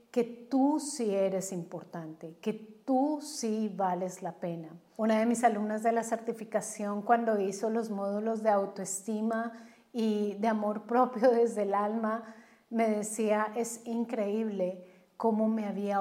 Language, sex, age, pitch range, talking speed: Spanish, female, 30-49, 200-230 Hz, 140 wpm